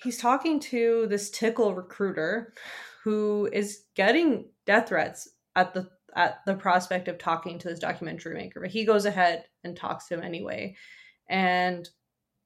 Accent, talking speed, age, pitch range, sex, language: American, 155 wpm, 20-39, 175-225 Hz, female, English